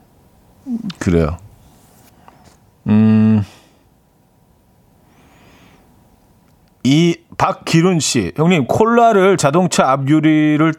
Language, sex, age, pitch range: Korean, male, 40-59, 110-165 Hz